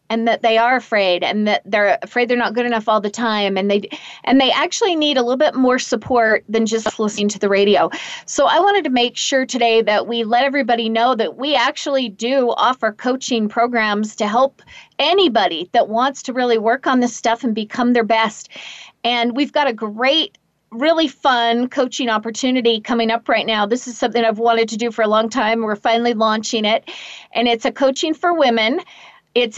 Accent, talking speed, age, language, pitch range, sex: American, 205 wpm, 40-59, English, 225-260 Hz, female